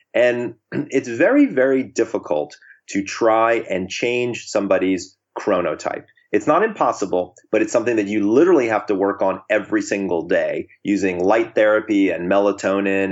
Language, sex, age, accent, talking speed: English, male, 30-49, American, 145 wpm